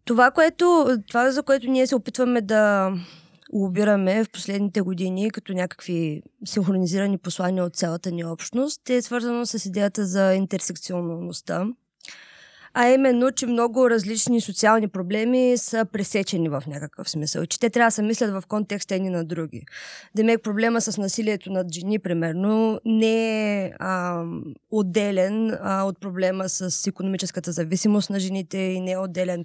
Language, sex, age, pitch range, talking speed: Bulgarian, female, 20-39, 185-225 Hz, 150 wpm